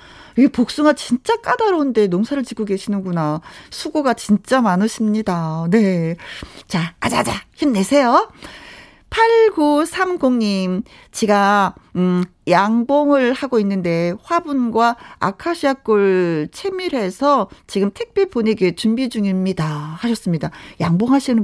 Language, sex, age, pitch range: Korean, female, 40-59, 185-270 Hz